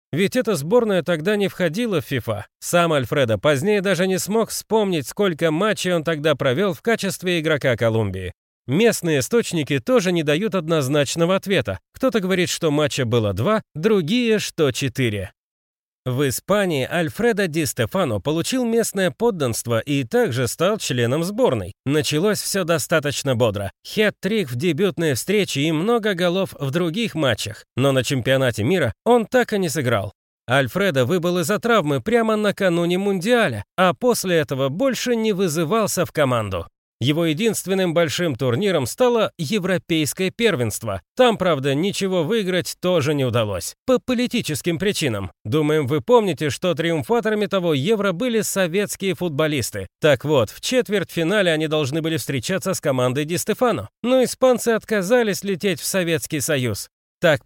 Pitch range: 140-205 Hz